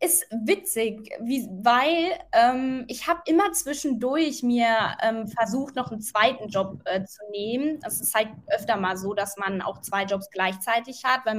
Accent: German